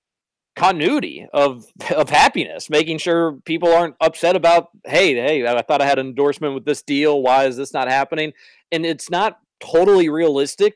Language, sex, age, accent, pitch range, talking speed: English, male, 40-59, American, 135-175 Hz, 175 wpm